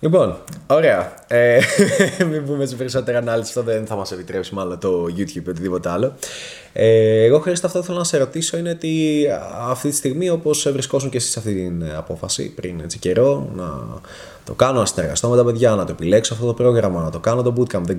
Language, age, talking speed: Greek, 20-39, 215 wpm